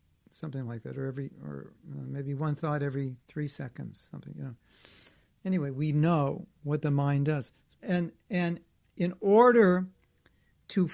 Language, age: English, 60-79